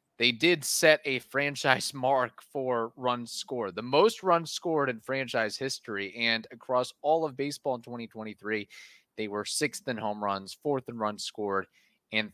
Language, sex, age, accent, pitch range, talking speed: English, male, 30-49, American, 110-135 Hz, 165 wpm